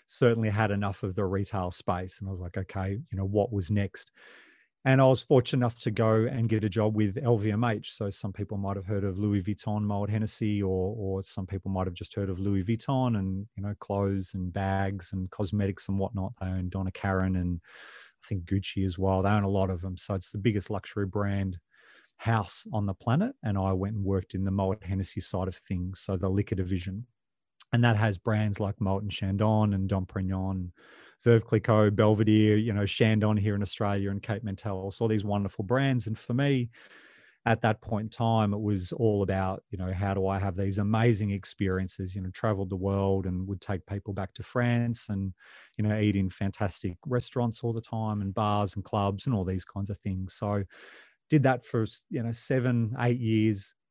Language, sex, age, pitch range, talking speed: English, male, 30-49, 95-110 Hz, 215 wpm